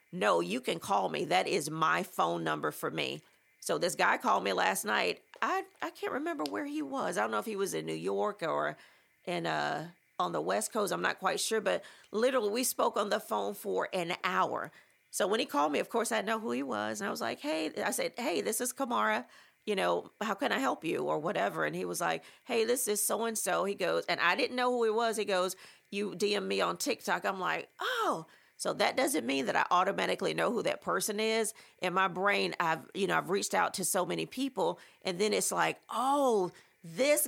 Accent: American